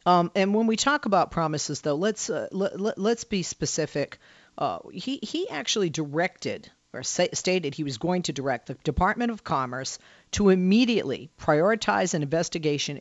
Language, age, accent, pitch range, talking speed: English, 40-59, American, 155-205 Hz, 170 wpm